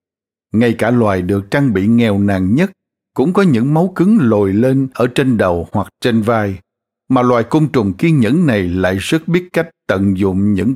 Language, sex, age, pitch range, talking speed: Vietnamese, male, 60-79, 100-130 Hz, 200 wpm